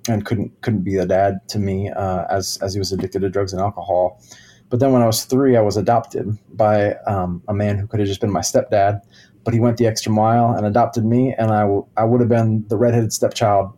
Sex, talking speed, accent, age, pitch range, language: male, 250 wpm, American, 20-39, 105-125 Hz, English